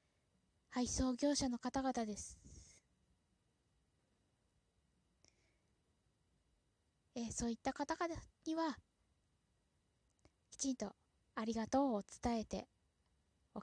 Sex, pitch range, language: female, 210-285 Hz, Japanese